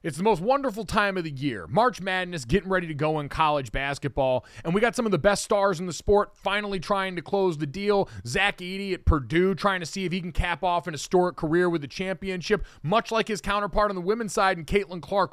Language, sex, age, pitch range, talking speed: English, male, 30-49, 155-205 Hz, 245 wpm